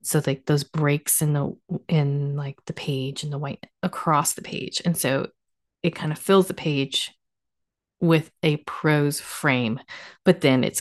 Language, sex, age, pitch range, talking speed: English, female, 30-49, 140-165 Hz, 170 wpm